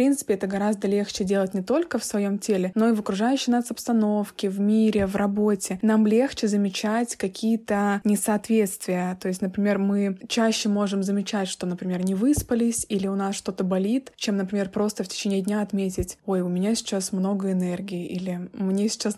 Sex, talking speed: female, 185 wpm